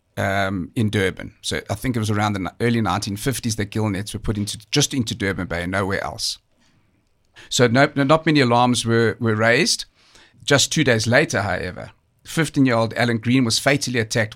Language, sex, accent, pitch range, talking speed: English, male, South African, 105-130 Hz, 185 wpm